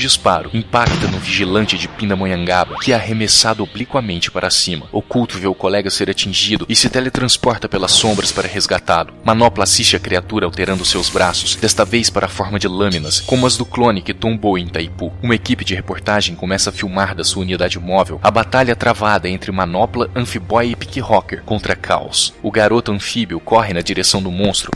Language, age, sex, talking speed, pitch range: Portuguese, 20-39, male, 185 wpm, 90-115 Hz